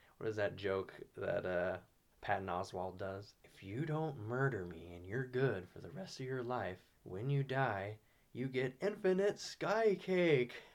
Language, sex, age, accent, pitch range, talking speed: English, male, 20-39, American, 100-125 Hz, 175 wpm